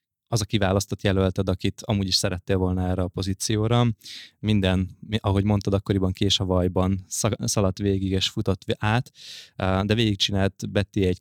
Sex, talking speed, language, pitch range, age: male, 150 wpm, Hungarian, 95-105 Hz, 20-39